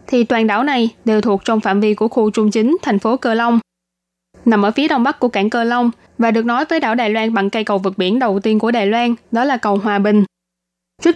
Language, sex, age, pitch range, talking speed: Vietnamese, female, 20-39, 200-240 Hz, 265 wpm